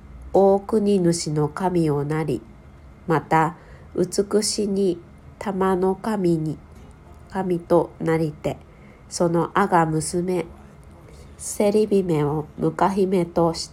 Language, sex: Japanese, female